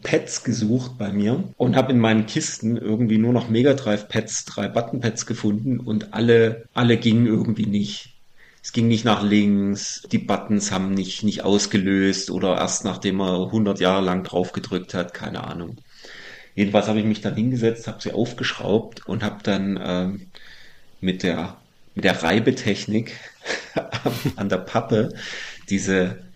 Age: 40-59